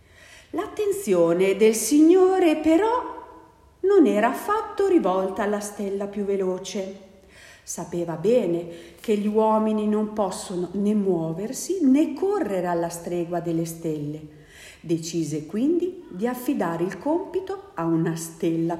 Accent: native